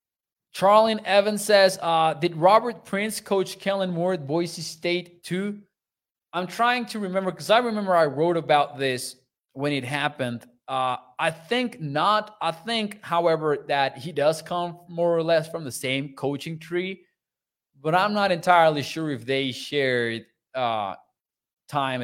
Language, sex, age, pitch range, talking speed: English, male, 20-39, 130-180 Hz, 155 wpm